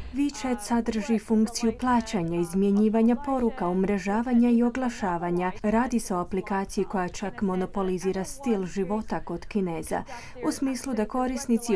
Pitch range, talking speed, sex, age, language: 190-230 Hz, 125 wpm, female, 30-49, Croatian